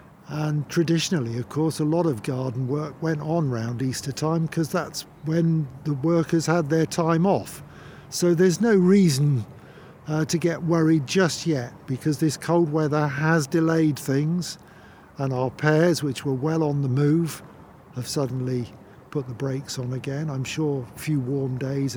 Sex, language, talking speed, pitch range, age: male, English, 170 wpm, 130-165 Hz, 50-69